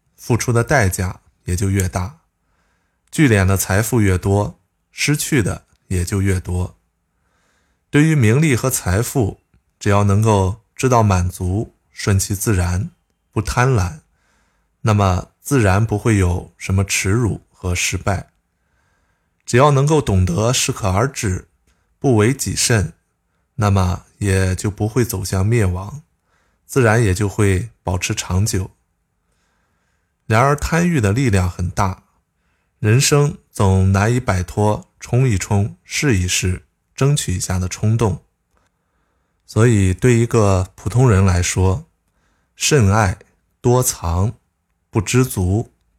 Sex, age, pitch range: male, 20-39, 90-115 Hz